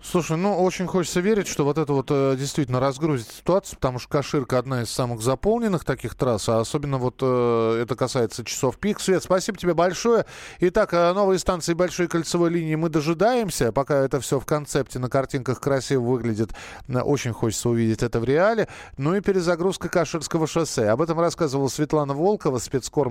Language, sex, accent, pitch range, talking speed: Russian, male, native, 125-160 Hz, 175 wpm